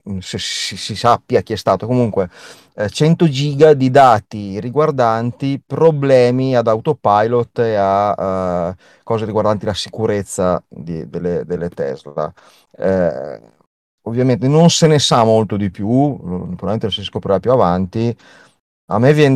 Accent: native